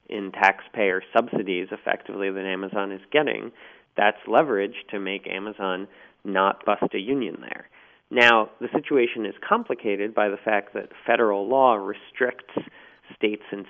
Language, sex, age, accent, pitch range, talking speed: English, male, 30-49, American, 95-110 Hz, 140 wpm